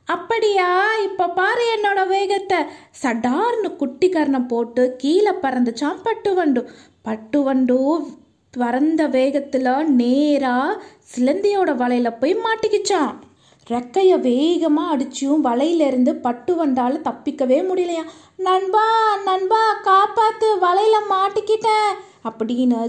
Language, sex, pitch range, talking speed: Tamil, female, 260-390 Hz, 90 wpm